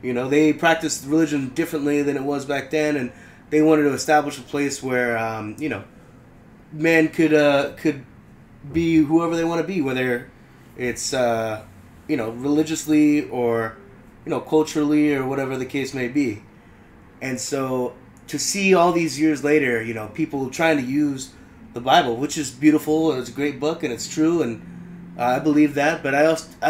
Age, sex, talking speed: 20-39, male, 185 wpm